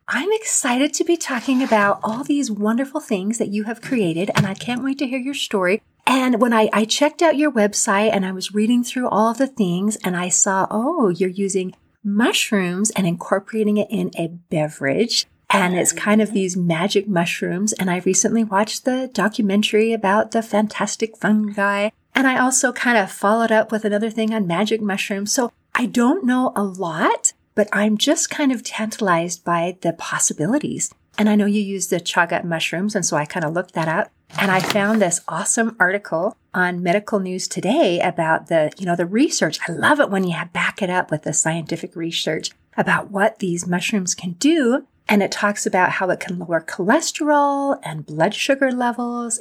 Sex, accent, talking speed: female, American, 195 wpm